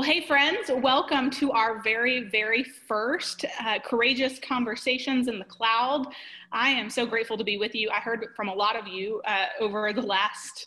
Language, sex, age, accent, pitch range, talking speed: English, female, 20-39, American, 195-240 Hz, 190 wpm